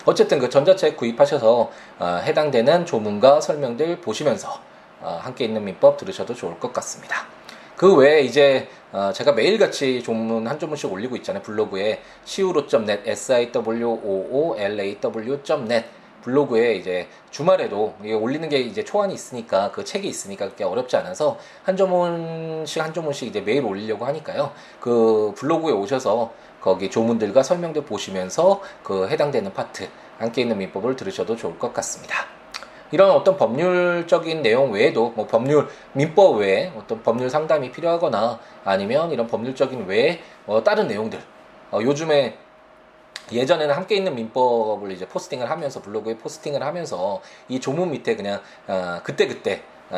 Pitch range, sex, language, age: 110-175 Hz, male, Korean, 20-39